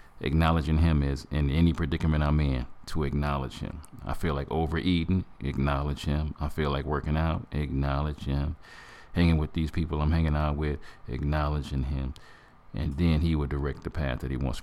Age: 40-59